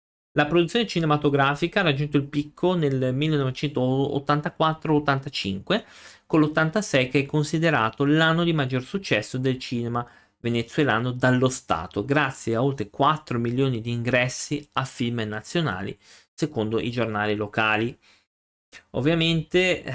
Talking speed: 115 wpm